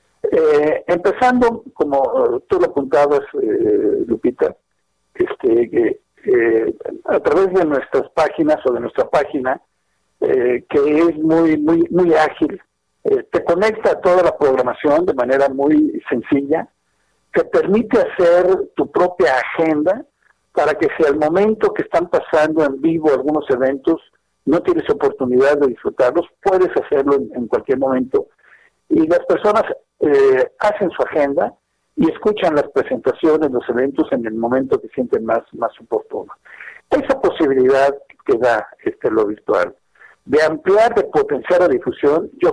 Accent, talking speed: Mexican, 145 wpm